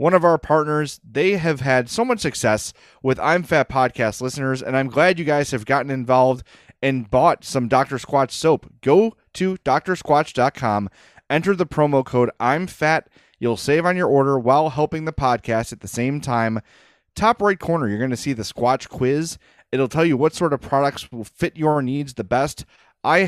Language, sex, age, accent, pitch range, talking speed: English, male, 30-49, American, 120-155 Hz, 195 wpm